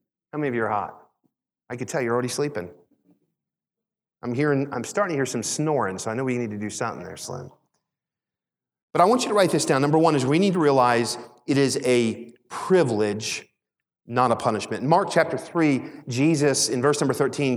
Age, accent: 40-59, American